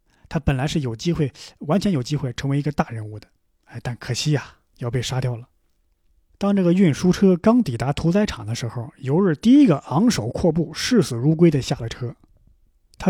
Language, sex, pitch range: Chinese, male, 130-180 Hz